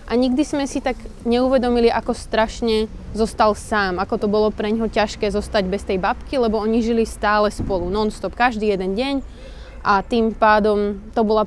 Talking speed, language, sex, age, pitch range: 180 wpm, Slovak, female, 20-39, 205-245 Hz